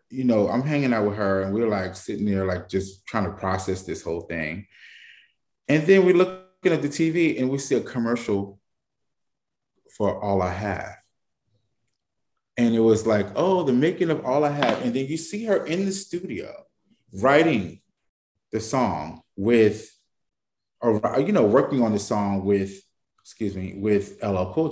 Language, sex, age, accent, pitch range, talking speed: English, male, 20-39, American, 100-135 Hz, 175 wpm